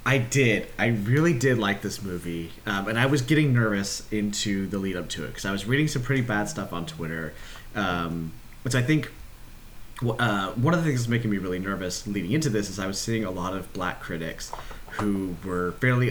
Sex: male